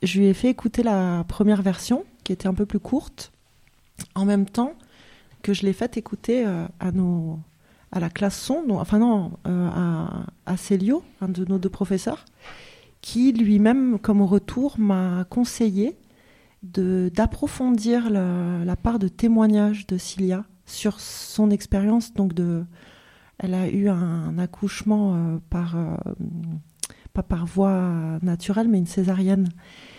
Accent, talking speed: French, 140 wpm